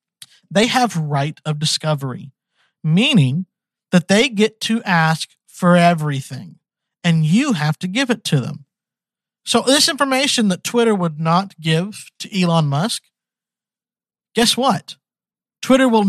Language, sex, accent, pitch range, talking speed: English, male, American, 165-225 Hz, 135 wpm